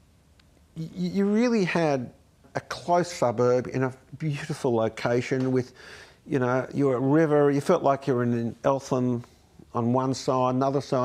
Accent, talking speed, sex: Australian, 145 wpm, male